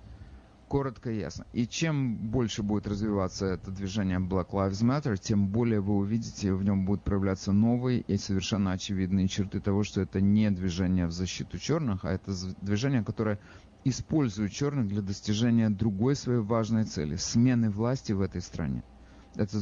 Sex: male